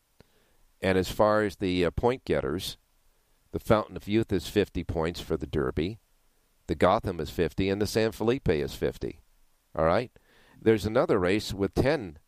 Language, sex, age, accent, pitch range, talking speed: English, male, 50-69, American, 75-95 Hz, 170 wpm